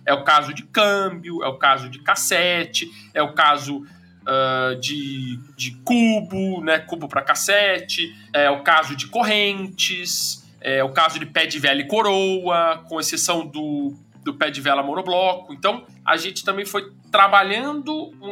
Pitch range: 160-205 Hz